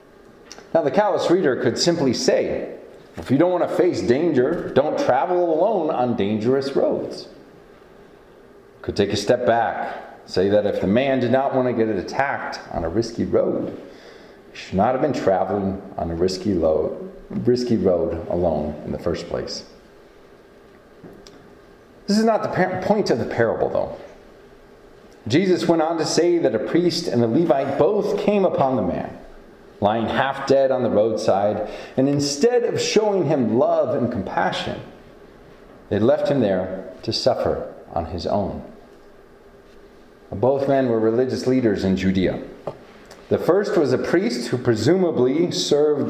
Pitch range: 105-160 Hz